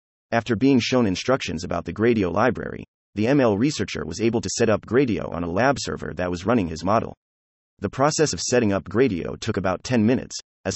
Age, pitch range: 30-49, 85-120 Hz